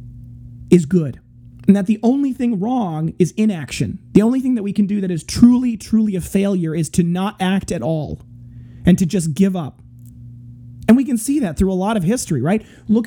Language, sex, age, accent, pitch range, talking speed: English, male, 30-49, American, 155-230 Hz, 210 wpm